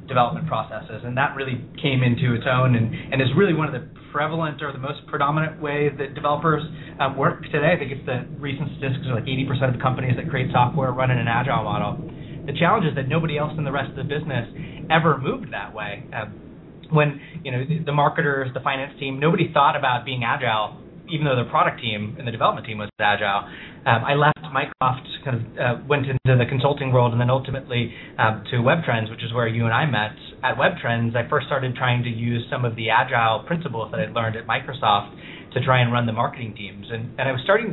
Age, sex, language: 30-49, male, English